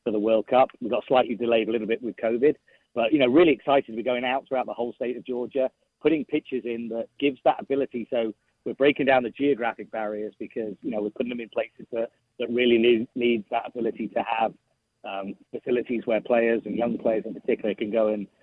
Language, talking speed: English, 230 wpm